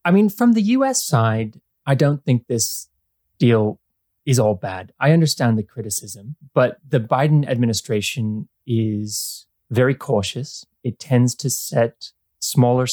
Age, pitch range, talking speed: 20-39, 105-135 Hz, 140 wpm